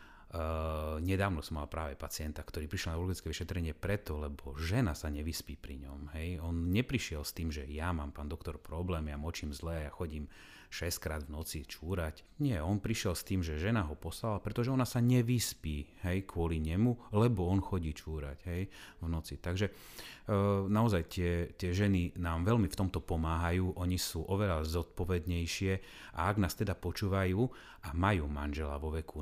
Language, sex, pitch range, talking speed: Slovak, male, 75-90 Hz, 175 wpm